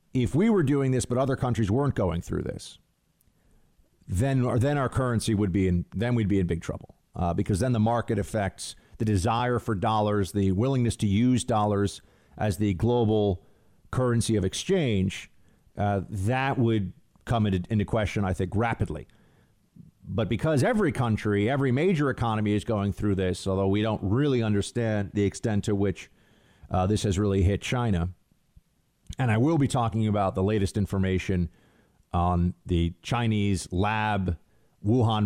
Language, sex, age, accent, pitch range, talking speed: English, male, 40-59, American, 95-120 Hz, 165 wpm